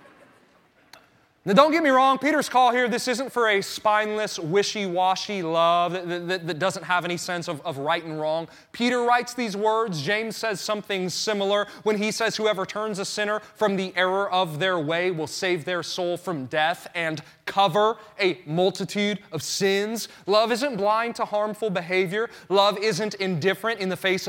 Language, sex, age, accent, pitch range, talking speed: English, male, 30-49, American, 170-220 Hz, 180 wpm